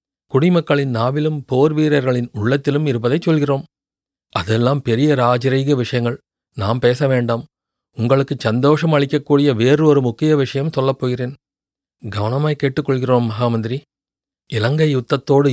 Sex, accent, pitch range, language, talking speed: male, native, 120-150 Hz, Tamil, 100 wpm